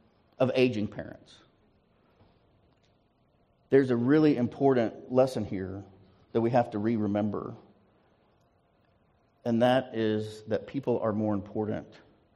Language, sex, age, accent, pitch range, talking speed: English, male, 50-69, American, 110-140 Hz, 105 wpm